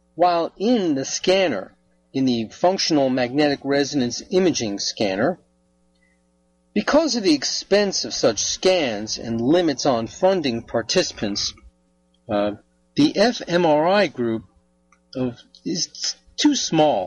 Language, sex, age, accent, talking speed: English, male, 40-59, American, 105 wpm